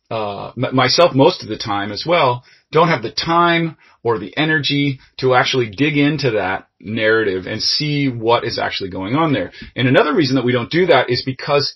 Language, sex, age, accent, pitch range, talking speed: English, male, 30-49, American, 115-145 Hz, 200 wpm